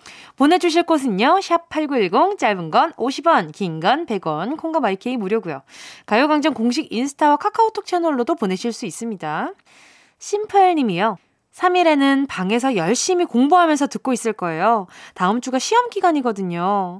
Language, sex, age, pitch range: Korean, female, 20-39, 220-345 Hz